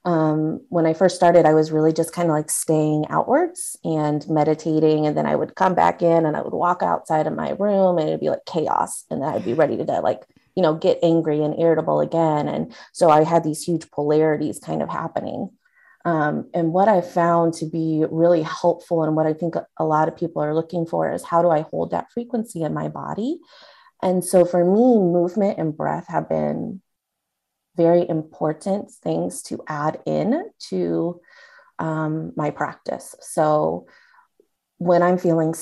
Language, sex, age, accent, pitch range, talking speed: English, female, 30-49, American, 155-180 Hz, 190 wpm